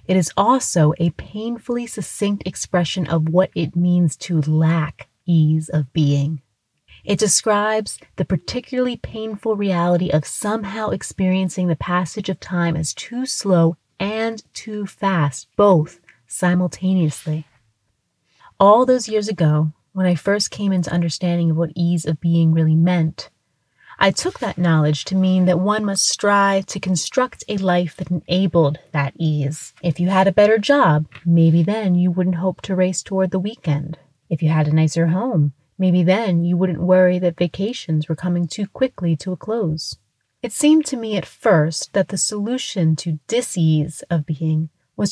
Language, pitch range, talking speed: English, 160-200 Hz, 160 wpm